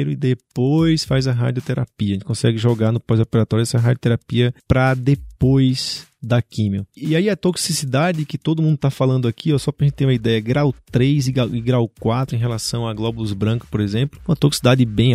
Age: 20-39